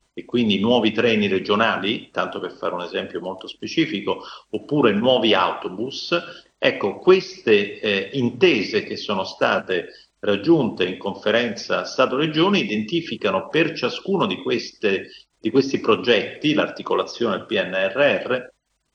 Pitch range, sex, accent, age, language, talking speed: 110-160 Hz, male, native, 50-69, Italian, 115 wpm